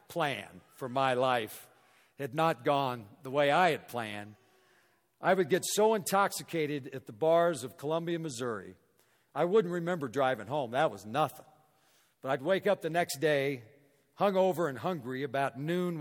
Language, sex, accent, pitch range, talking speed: English, male, American, 130-170 Hz, 160 wpm